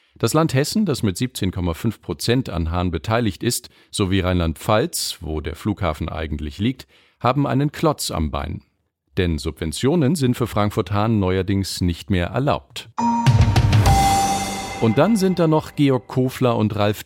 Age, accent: 40-59, German